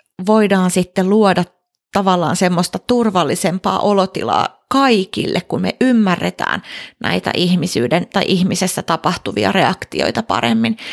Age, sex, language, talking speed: 30-49, female, Finnish, 100 wpm